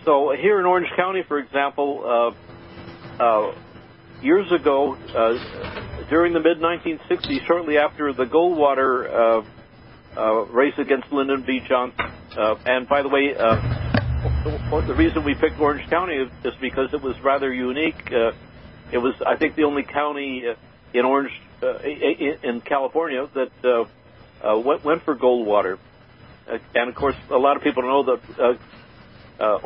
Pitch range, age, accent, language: 120-150 Hz, 60-79, American, English